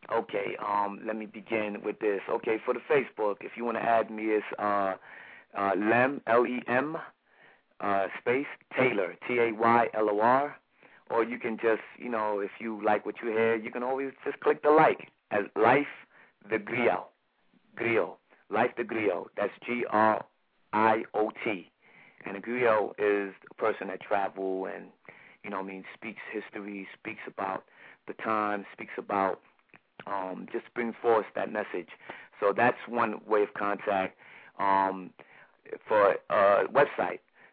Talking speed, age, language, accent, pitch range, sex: 165 wpm, 30-49, English, American, 100-115 Hz, male